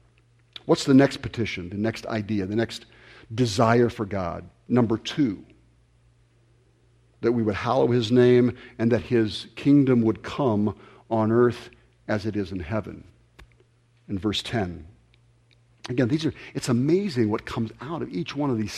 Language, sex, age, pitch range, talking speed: English, male, 50-69, 110-130 Hz, 155 wpm